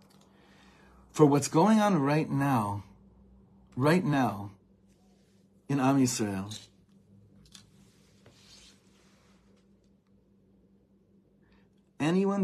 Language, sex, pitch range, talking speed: English, male, 100-125 Hz, 60 wpm